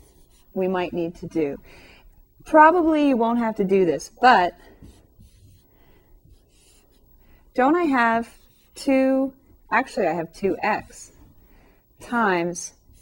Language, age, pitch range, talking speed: English, 30-49, 165-215 Hz, 105 wpm